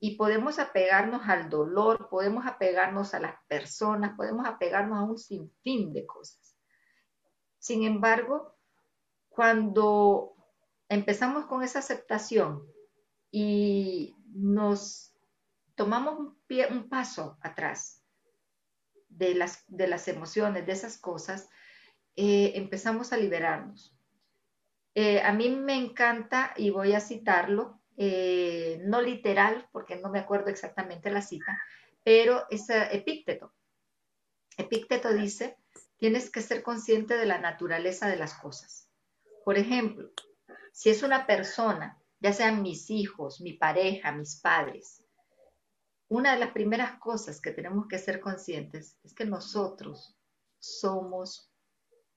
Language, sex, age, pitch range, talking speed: Spanish, female, 40-59, 185-235 Hz, 120 wpm